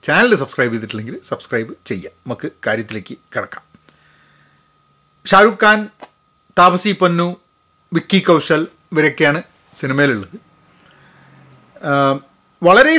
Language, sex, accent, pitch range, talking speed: Malayalam, male, native, 130-200 Hz, 80 wpm